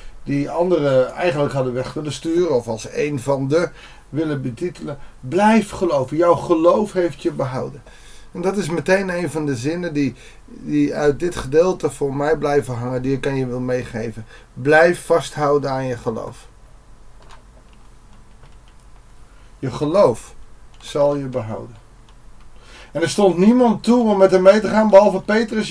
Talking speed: 155 wpm